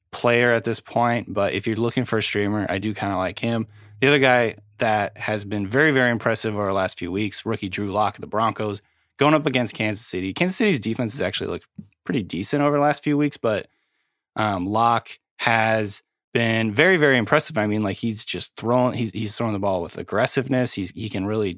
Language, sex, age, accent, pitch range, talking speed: English, male, 30-49, American, 100-120 Hz, 220 wpm